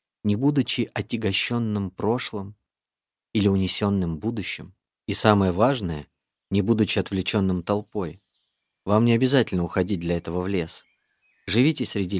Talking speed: 120 wpm